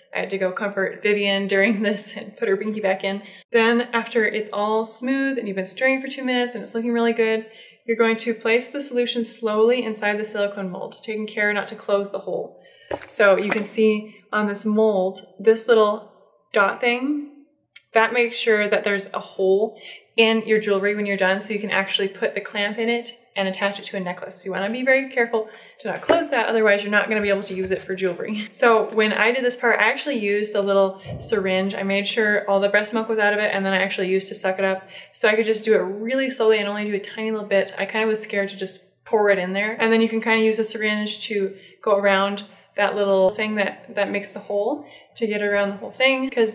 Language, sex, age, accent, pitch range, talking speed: English, female, 20-39, American, 200-225 Hz, 250 wpm